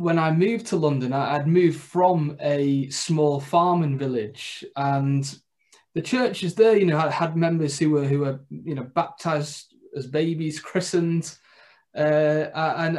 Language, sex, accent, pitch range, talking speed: English, male, British, 135-165 Hz, 150 wpm